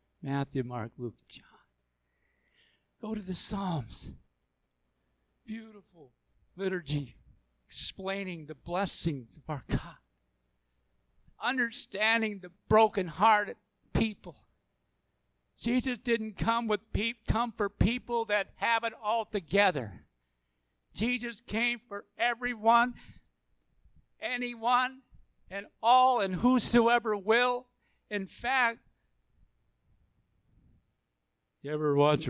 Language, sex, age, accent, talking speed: English, male, 60-79, American, 90 wpm